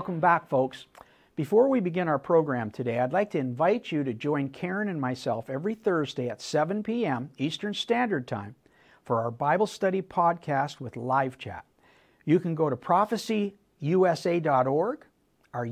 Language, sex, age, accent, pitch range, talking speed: English, male, 60-79, American, 135-215 Hz, 155 wpm